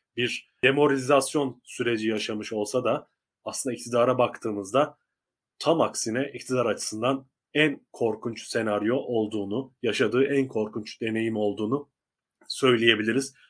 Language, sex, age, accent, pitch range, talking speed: Turkish, male, 30-49, native, 110-135 Hz, 100 wpm